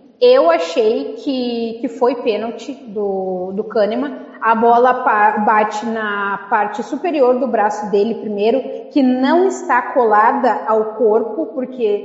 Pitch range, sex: 230-275 Hz, female